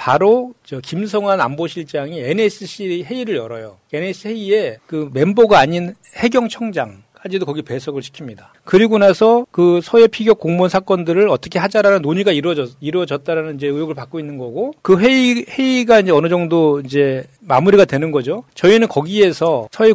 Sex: male